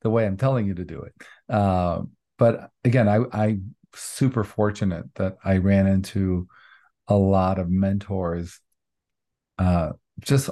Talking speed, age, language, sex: 145 wpm, 40-59, English, male